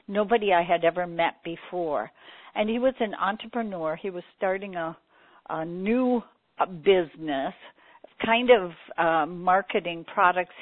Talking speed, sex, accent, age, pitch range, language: 130 wpm, female, American, 60-79, 160-205 Hz, English